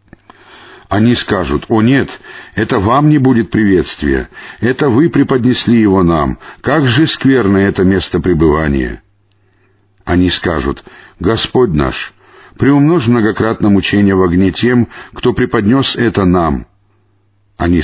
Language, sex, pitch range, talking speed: Russian, male, 95-115 Hz, 120 wpm